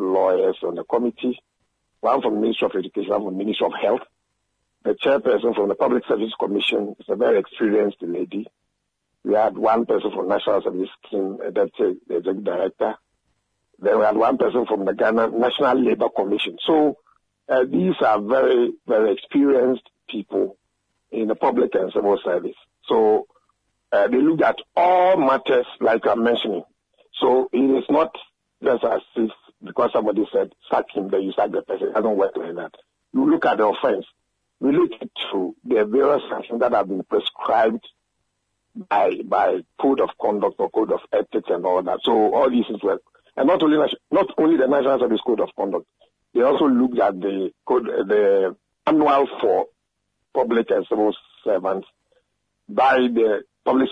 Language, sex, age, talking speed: English, male, 50-69, 175 wpm